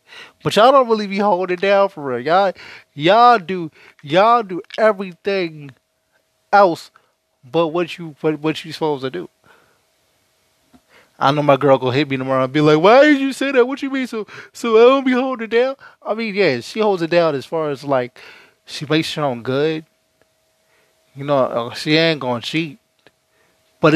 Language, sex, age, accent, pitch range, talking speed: English, male, 20-39, American, 155-220 Hz, 195 wpm